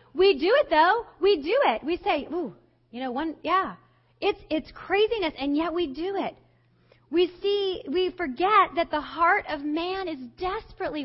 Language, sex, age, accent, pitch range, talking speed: English, female, 30-49, American, 235-350 Hz, 180 wpm